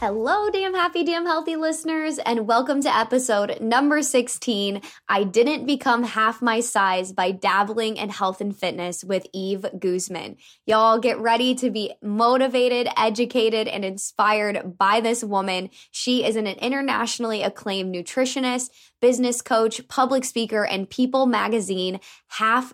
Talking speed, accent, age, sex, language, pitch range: 140 wpm, American, 10-29, female, English, 195-245 Hz